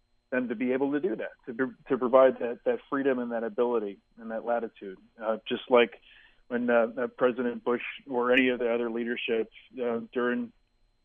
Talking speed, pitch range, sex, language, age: 190 wpm, 120-135 Hz, male, English, 40-59